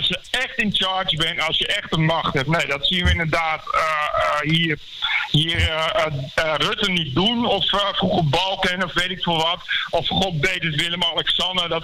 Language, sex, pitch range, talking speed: Dutch, male, 165-200 Hz, 230 wpm